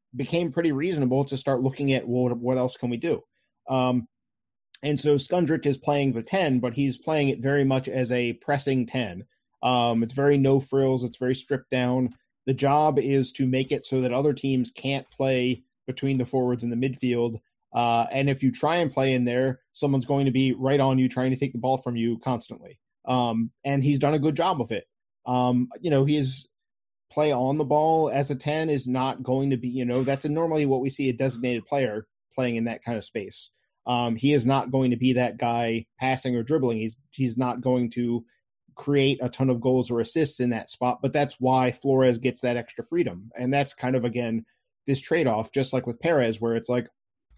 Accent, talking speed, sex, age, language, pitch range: American, 220 wpm, male, 20-39, English, 125-140 Hz